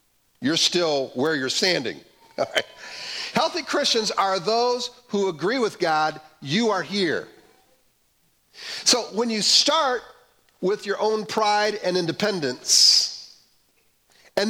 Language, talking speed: English, 120 wpm